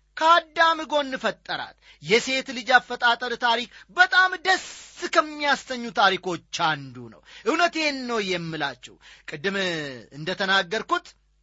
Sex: male